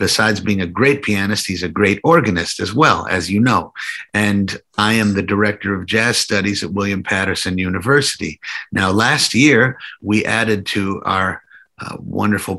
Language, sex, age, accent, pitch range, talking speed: English, male, 50-69, American, 100-115 Hz, 165 wpm